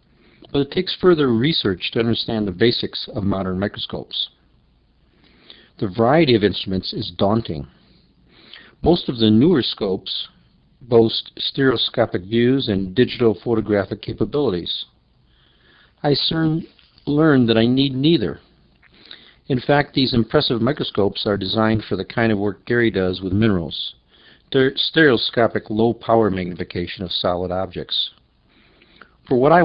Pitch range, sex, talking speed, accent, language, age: 95-125 Hz, male, 130 wpm, American, English, 50-69